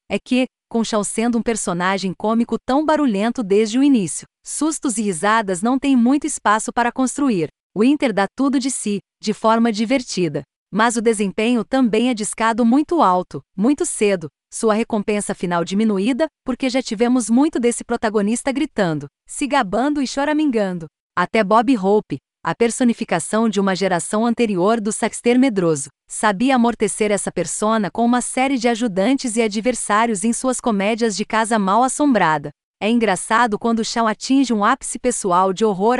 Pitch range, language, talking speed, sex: 205-260 Hz, Portuguese, 160 wpm, female